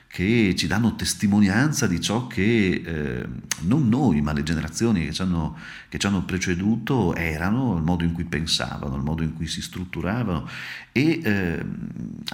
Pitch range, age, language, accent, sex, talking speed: 80-100 Hz, 40-59, Italian, native, male, 155 wpm